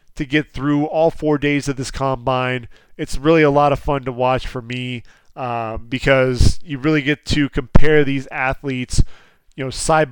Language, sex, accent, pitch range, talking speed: English, male, American, 130-150 Hz, 185 wpm